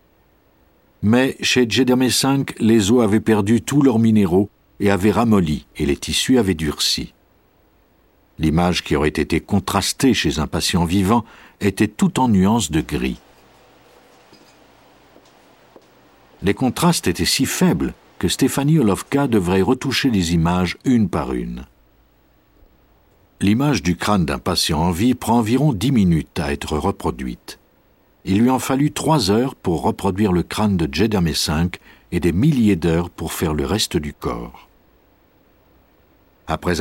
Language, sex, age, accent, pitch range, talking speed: French, male, 60-79, French, 85-120 Hz, 140 wpm